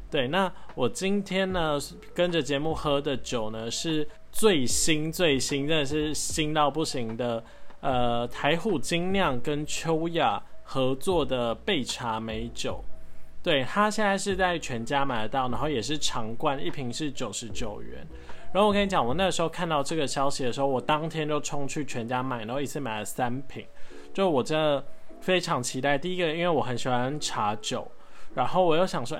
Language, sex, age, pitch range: Chinese, male, 20-39, 125-170 Hz